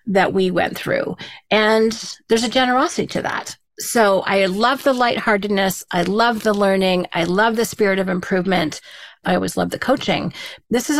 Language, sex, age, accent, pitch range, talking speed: English, female, 40-59, American, 195-250 Hz, 175 wpm